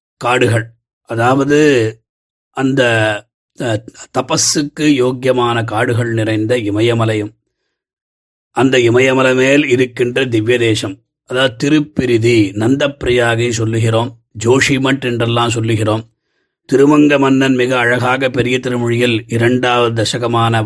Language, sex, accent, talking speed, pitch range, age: Tamil, male, native, 75 wpm, 115-130 Hz, 30-49